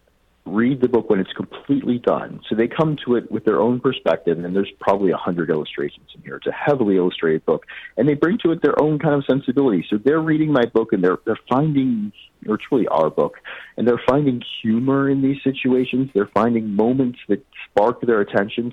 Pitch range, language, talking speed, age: 90-130 Hz, English, 215 wpm, 40-59